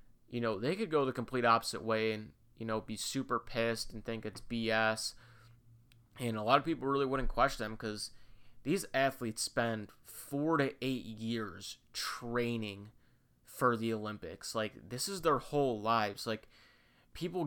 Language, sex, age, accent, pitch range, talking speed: English, male, 30-49, American, 110-125 Hz, 165 wpm